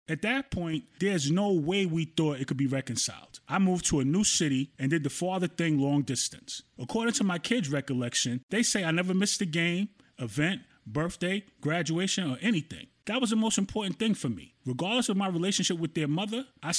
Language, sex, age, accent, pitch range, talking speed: English, male, 30-49, American, 140-195 Hz, 205 wpm